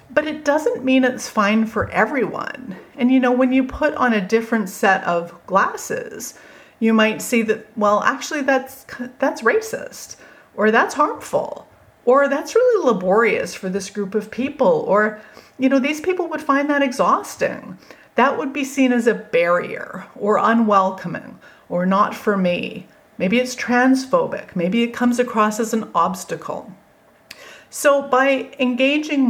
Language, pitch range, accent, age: English, 195-260 Hz, American, 40-59